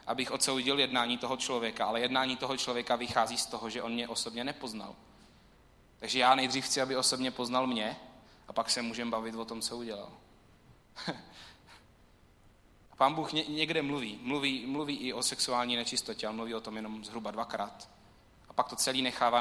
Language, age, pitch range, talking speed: Czech, 30-49, 110-125 Hz, 175 wpm